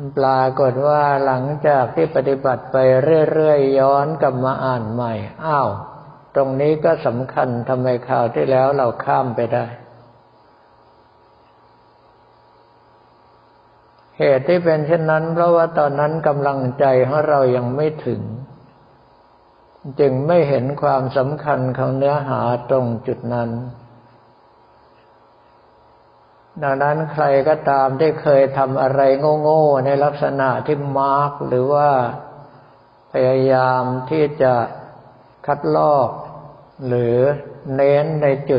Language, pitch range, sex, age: Thai, 115-145 Hz, male, 60-79